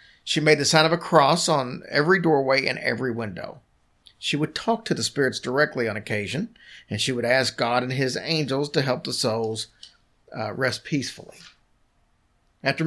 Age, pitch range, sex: 50-69, 120-160 Hz, male